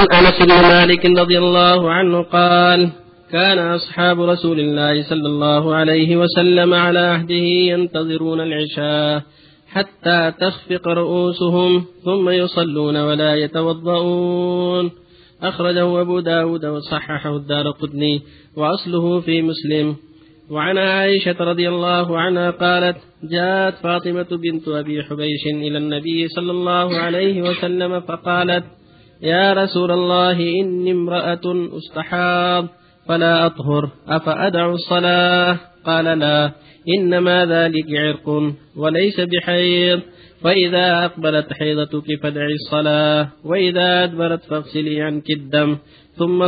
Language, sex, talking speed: Arabic, male, 105 wpm